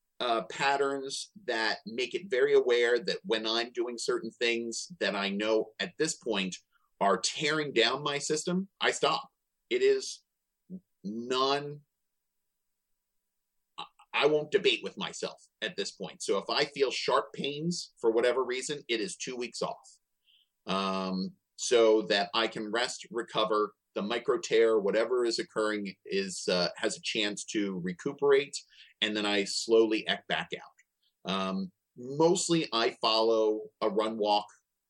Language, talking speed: English, 145 wpm